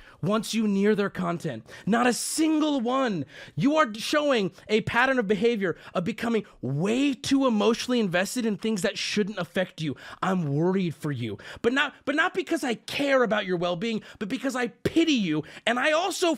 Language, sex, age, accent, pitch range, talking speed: English, male, 30-49, American, 170-250 Hz, 185 wpm